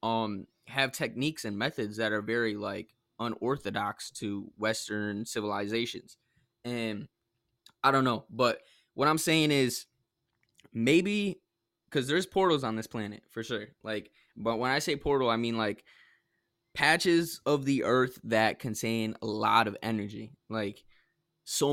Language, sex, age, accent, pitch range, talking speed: English, male, 20-39, American, 105-125 Hz, 145 wpm